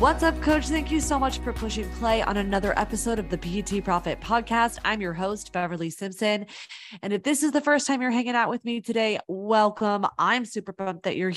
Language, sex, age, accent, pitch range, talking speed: English, female, 20-39, American, 165-205 Hz, 220 wpm